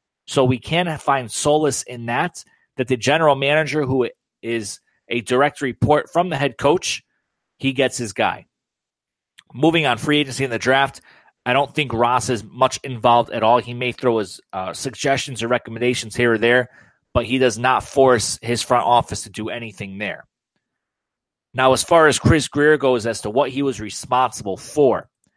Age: 30-49